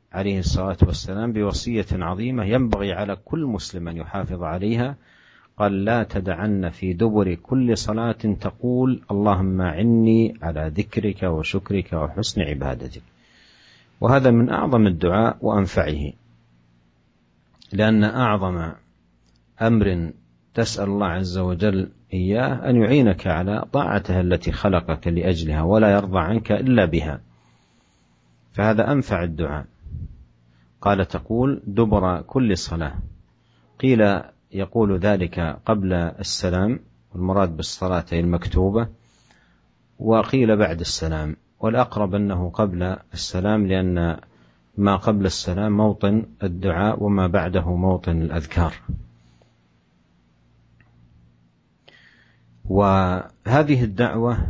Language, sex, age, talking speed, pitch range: Indonesian, male, 50-69, 95 wpm, 85-110 Hz